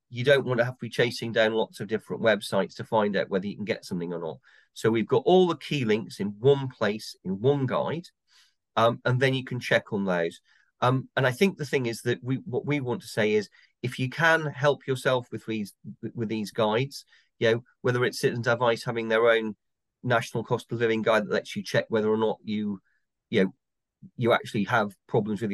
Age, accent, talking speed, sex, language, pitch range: 40-59, British, 230 wpm, male, English, 110-135 Hz